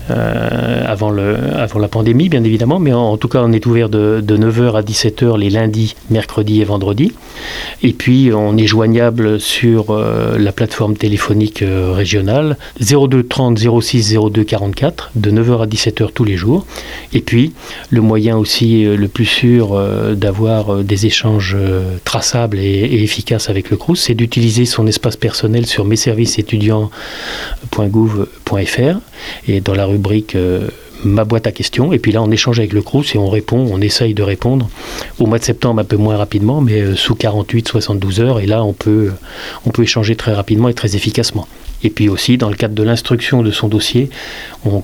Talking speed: 185 wpm